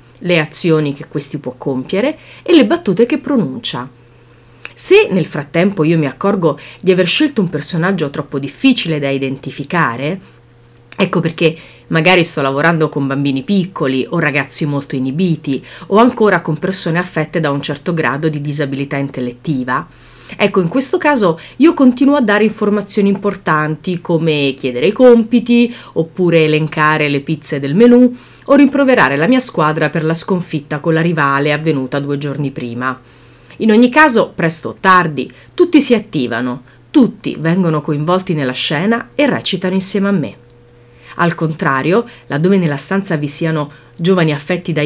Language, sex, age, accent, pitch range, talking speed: Italian, female, 30-49, native, 140-195 Hz, 150 wpm